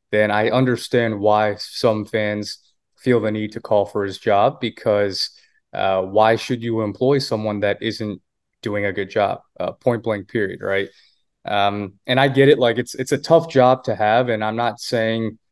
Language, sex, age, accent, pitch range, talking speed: English, male, 20-39, American, 105-125 Hz, 190 wpm